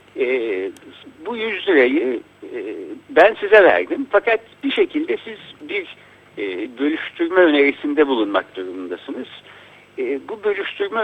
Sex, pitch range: male, 235-390 Hz